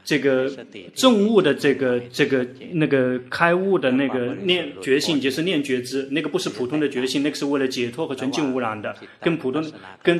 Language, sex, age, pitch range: Chinese, male, 30-49, 130-170 Hz